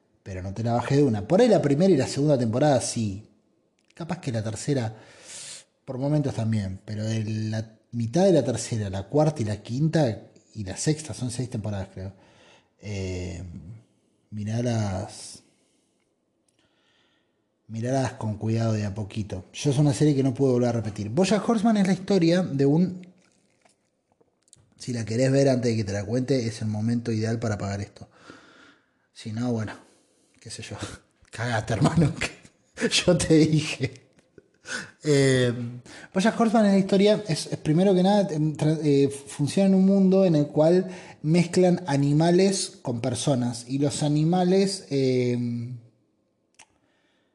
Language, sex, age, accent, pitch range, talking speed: Spanish, male, 30-49, Argentinian, 110-160 Hz, 155 wpm